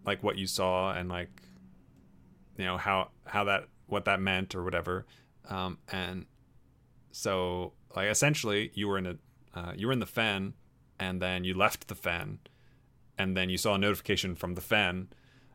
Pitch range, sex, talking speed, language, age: 95-125 Hz, male, 180 wpm, English, 30-49